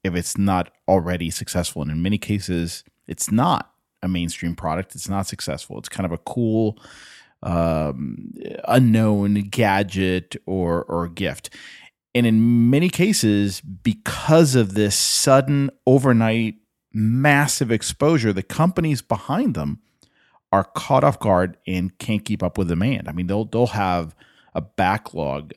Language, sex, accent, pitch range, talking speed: English, male, American, 90-120 Hz, 140 wpm